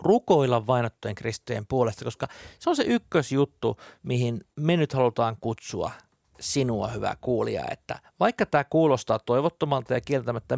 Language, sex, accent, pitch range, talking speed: Finnish, male, native, 110-135 Hz, 130 wpm